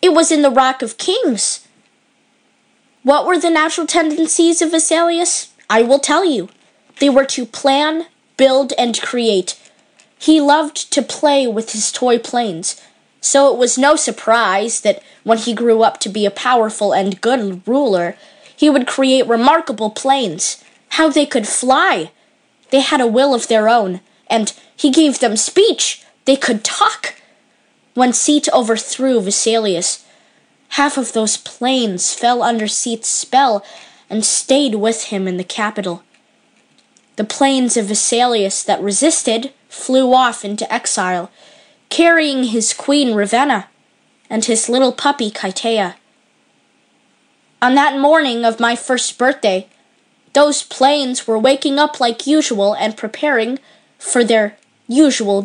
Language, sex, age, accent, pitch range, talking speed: English, female, 20-39, American, 220-285 Hz, 140 wpm